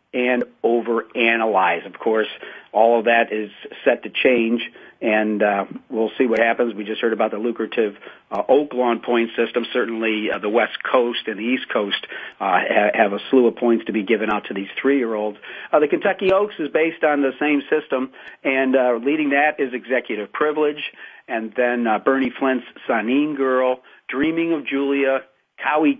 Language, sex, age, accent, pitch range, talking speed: English, male, 50-69, American, 115-135 Hz, 180 wpm